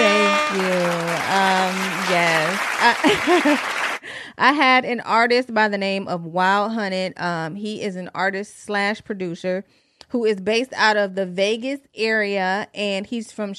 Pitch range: 180-225 Hz